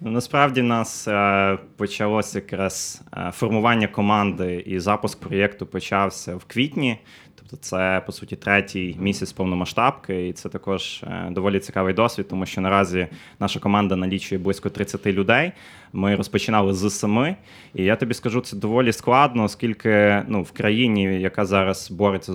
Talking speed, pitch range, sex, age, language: 140 wpm, 95-110 Hz, male, 20-39, Ukrainian